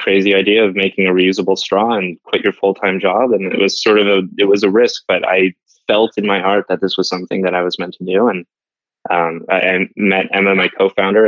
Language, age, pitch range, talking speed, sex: English, 20-39, 90-100 Hz, 240 wpm, male